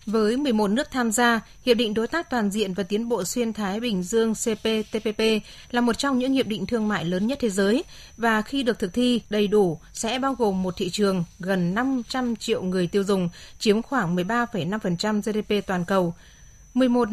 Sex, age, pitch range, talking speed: female, 20-39, 200-240 Hz, 200 wpm